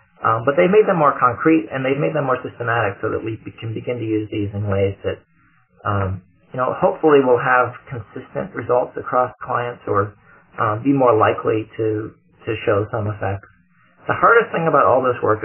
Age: 30-49